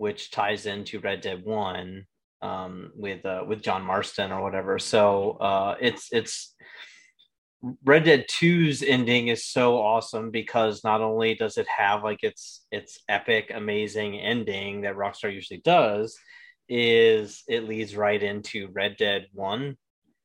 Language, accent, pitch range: English, American, 100-120 Hz